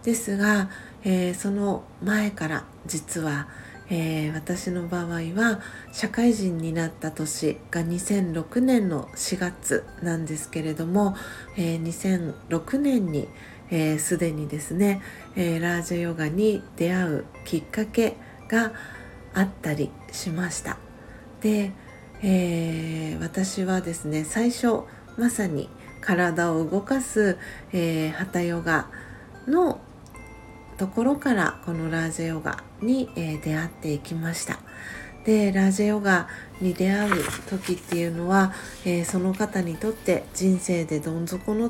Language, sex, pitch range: Japanese, female, 165-200 Hz